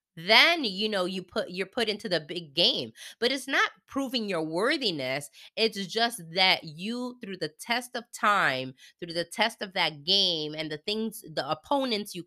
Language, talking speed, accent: English, 185 wpm, American